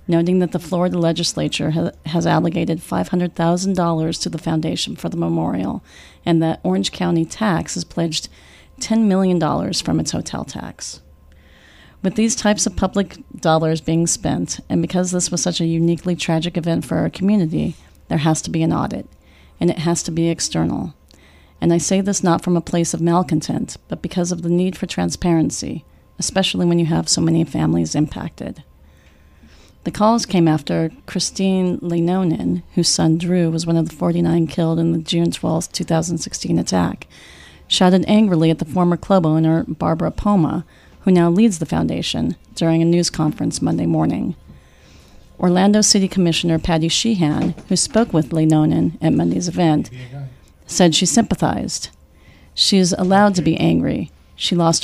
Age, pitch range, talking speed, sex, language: 40-59, 155-180 Hz, 160 wpm, female, English